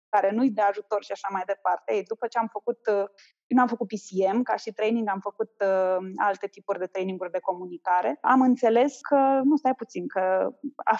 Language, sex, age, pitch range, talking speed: Romanian, female, 20-39, 200-255 Hz, 200 wpm